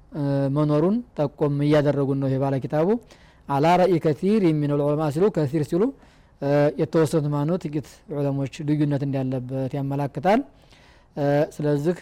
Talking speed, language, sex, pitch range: 100 wpm, Amharic, male, 145-170 Hz